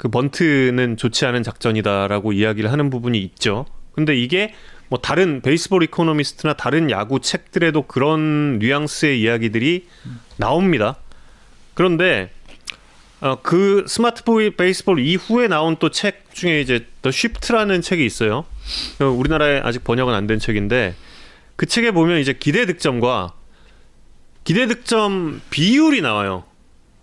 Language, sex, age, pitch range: Korean, male, 30-49, 130-215 Hz